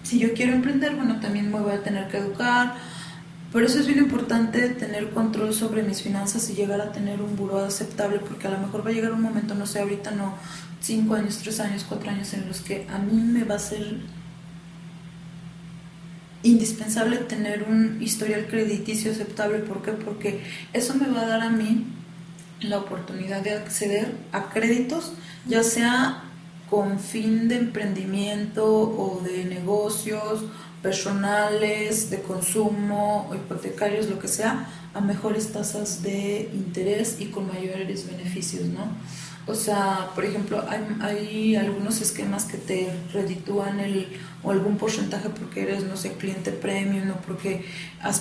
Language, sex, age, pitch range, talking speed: Spanish, female, 20-39, 190-220 Hz, 160 wpm